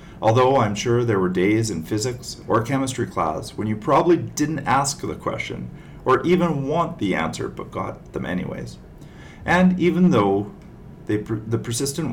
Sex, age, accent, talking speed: male, 40-59, American, 160 wpm